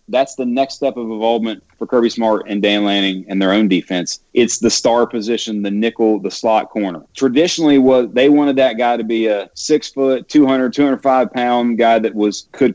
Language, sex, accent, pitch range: English, male, American, 110-135 Hz